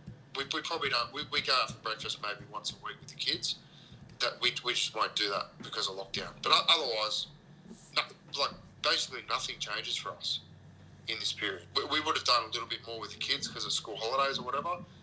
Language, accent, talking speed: English, Australian, 225 wpm